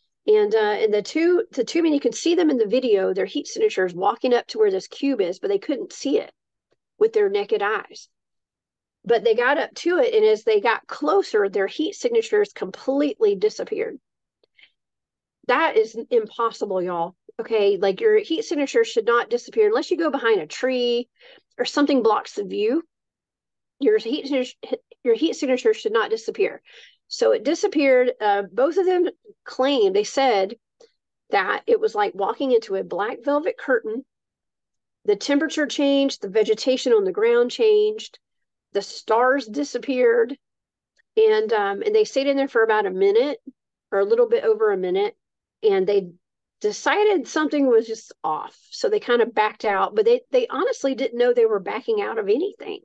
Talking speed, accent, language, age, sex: 175 wpm, American, English, 40-59, female